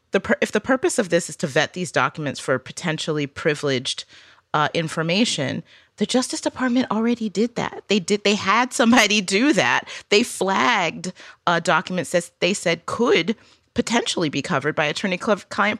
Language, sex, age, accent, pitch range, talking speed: English, female, 30-49, American, 155-220 Hz, 155 wpm